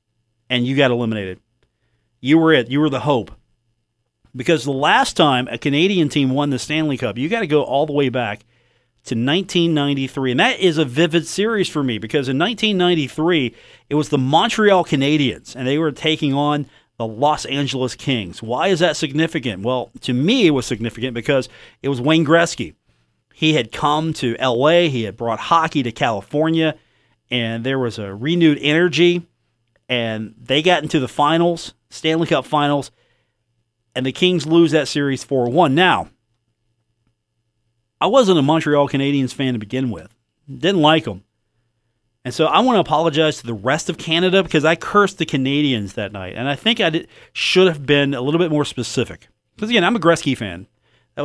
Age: 40-59